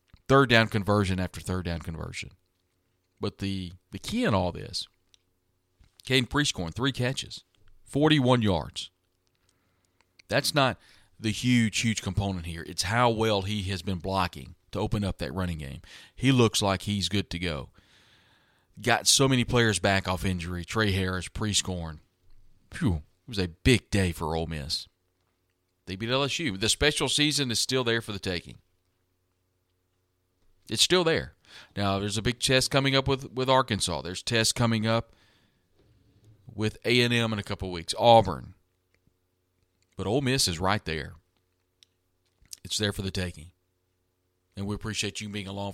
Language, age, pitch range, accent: English, 40-59, 90-110 Hz, American